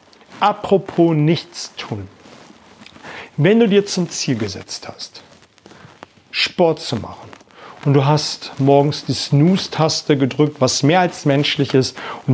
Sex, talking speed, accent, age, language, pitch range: male, 125 wpm, German, 40-59, German, 135-170 Hz